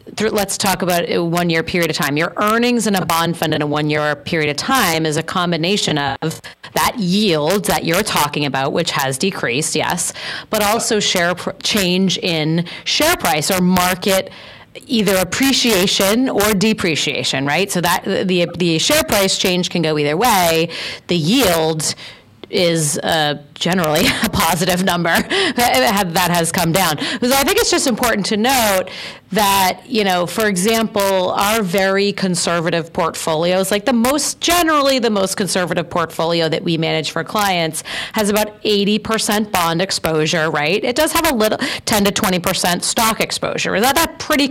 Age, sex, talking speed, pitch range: 30-49, female, 170 wpm, 165-215 Hz